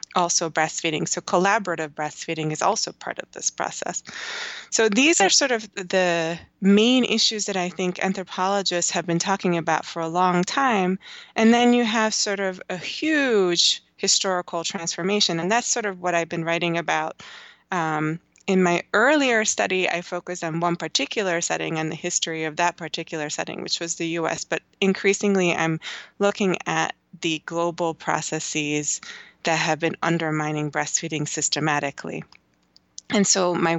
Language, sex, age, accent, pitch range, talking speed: English, female, 20-39, American, 160-195 Hz, 160 wpm